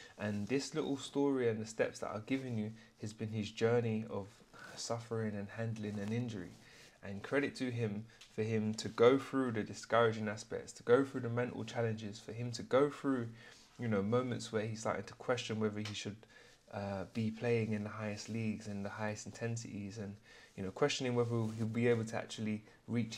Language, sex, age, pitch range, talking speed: English, male, 20-39, 105-125 Hz, 200 wpm